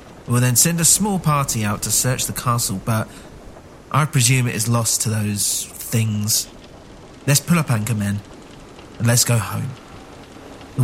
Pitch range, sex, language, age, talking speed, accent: 110-130 Hz, male, English, 40-59, 165 wpm, British